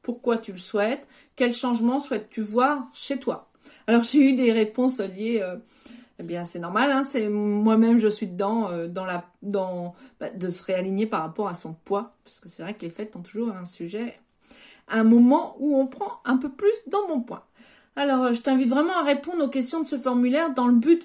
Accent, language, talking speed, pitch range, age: French, French, 215 wpm, 205-260 Hz, 40-59